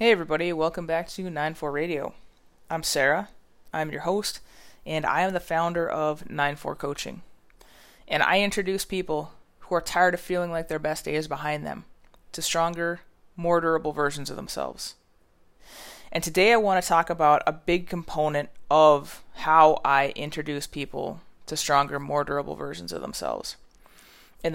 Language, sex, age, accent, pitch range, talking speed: English, female, 20-39, American, 145-175 Hz, 160 wpm